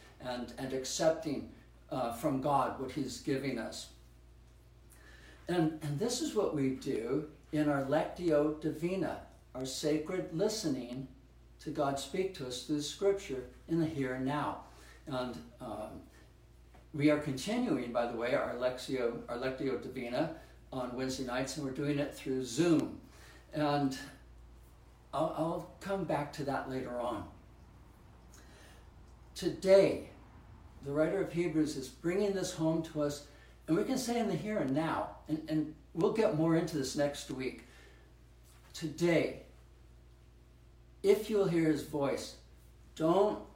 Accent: American